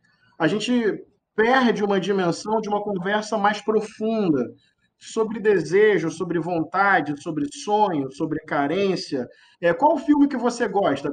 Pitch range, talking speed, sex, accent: 185-240 Hz, 130 wpm, male, Brazilian